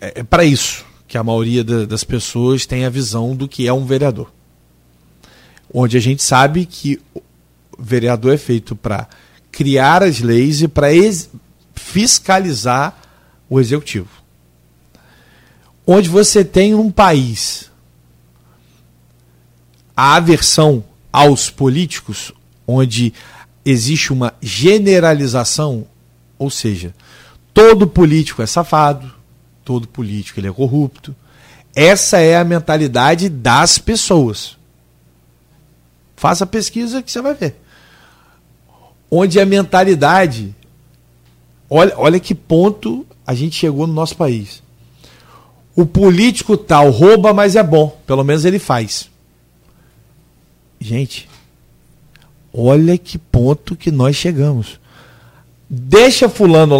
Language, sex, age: Portuguese, male, 40-59